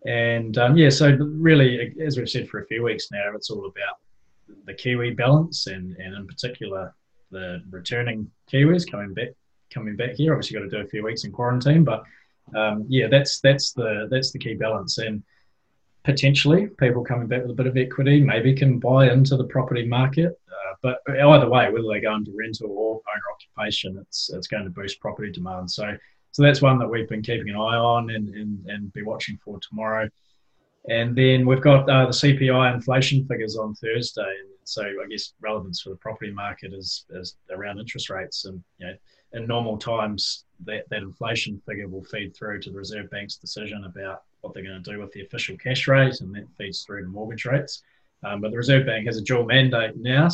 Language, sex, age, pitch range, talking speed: English, male, 20-39, 105-130 Hz, 210 wpm